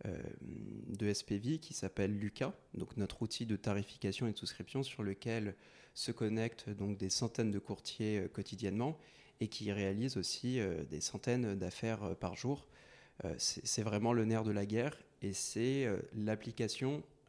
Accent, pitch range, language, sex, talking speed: French, 100-120 Hz, French, male, 140 wpm